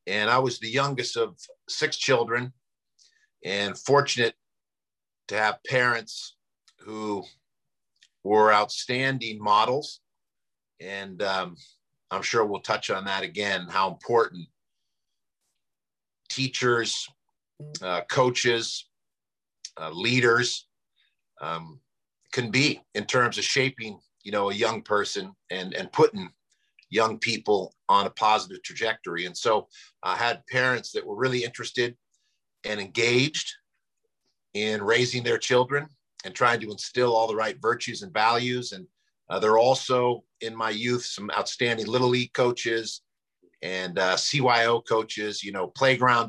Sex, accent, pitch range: male, American, 110-130 Hz